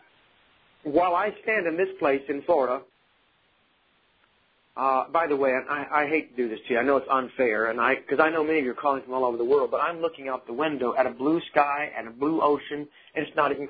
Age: 40-59